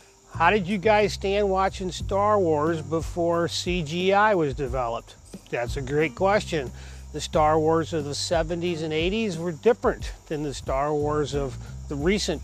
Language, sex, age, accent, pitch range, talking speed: English, male, 40-59, American, 140-175 Hz, 160 wpm